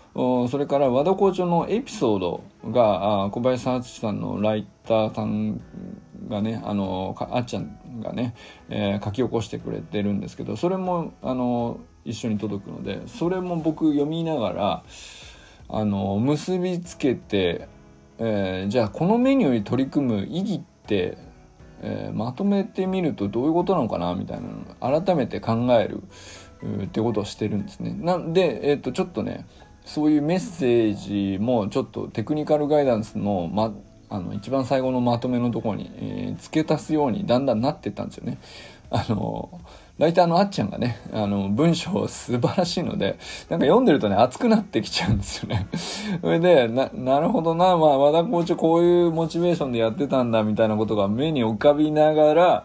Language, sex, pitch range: Japanese, male, 105-165 Hz